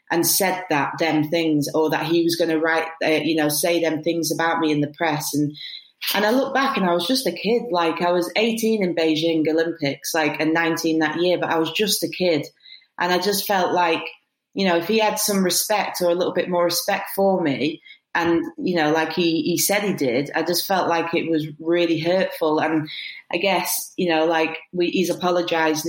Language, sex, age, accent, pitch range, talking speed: English, female, 30-49, British, 155-180 Hz, 225 wpm